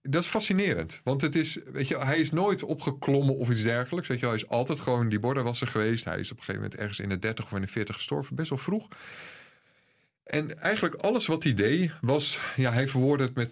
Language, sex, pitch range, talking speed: Dutch, male, 115-150 Hz, 240 wpm